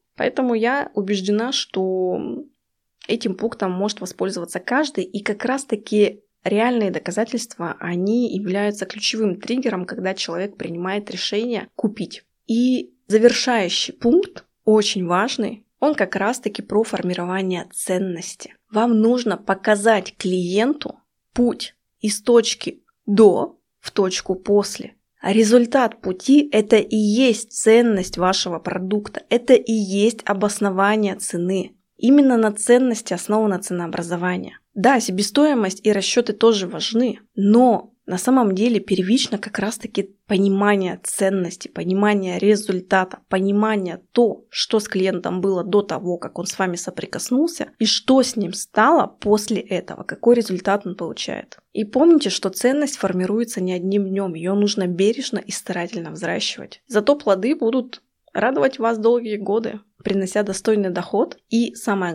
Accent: native